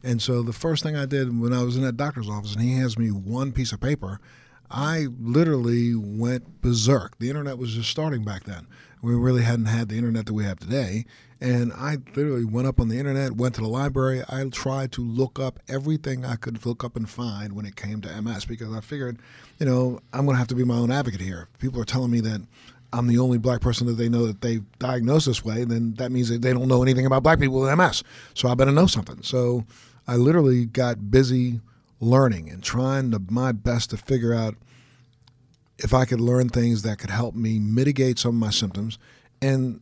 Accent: American